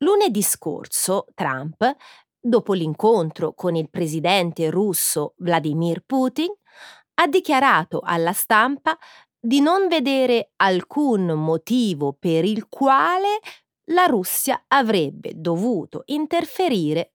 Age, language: 30-49, Italian